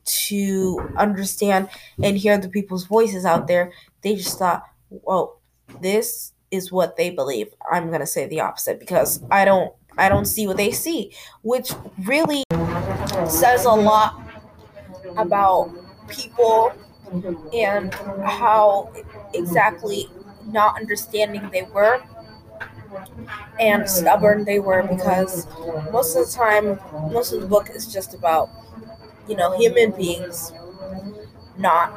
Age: 20-39